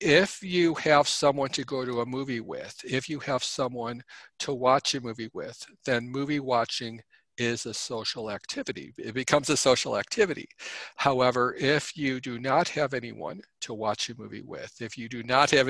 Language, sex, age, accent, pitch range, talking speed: English, male, 50-69, American, 115-140 Hz, 185 wpm